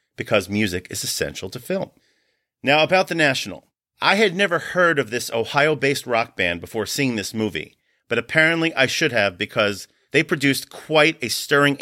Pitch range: 115-150 Hz